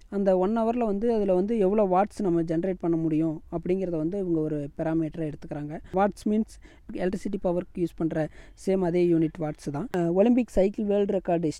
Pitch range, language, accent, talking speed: 160-195 Hz, Tamil, native, 170 wpm